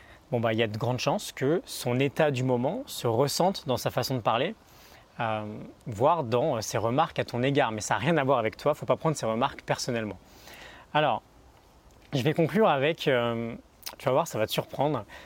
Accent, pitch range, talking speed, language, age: French, 125-165 Hz, 215 wpm, French, 20-39